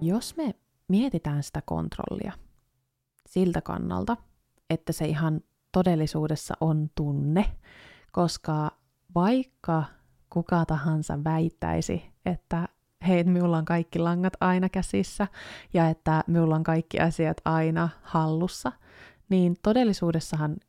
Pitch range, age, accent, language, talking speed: 155-190 Hz, 20-39, native, Finnish, 105 wpm